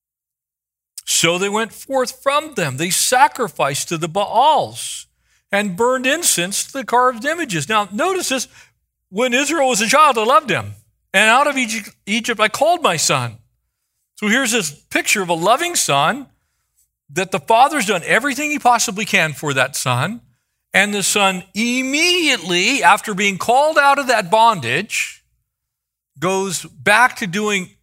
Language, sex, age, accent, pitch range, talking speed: English, male, 50-69, American, 160-245 Hz, 155 wpm